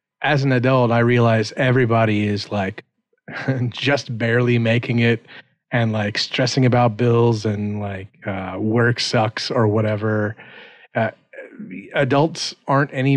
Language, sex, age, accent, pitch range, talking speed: English, male, 30-49, American, 110-130 Hz, 130 wpm